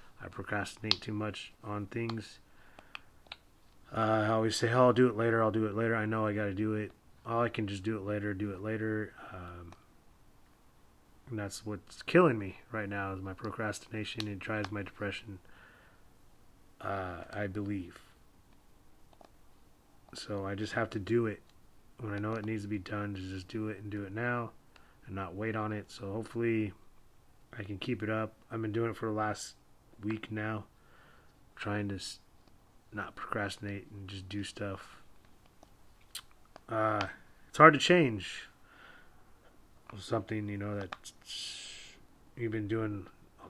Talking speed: 165 wpm